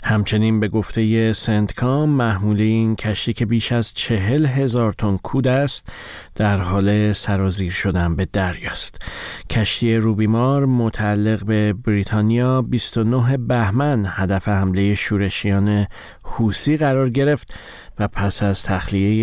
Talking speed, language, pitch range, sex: 120 wpm, Persian, 100-125 Hz, male